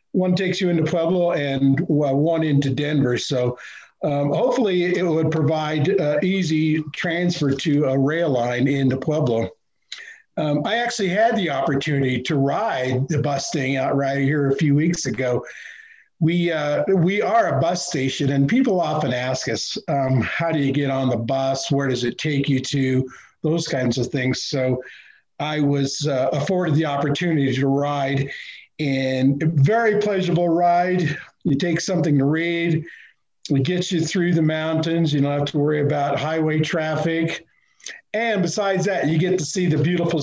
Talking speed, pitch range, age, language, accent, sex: 170 wpm, 135-170 Hz, 50-69, English, American, male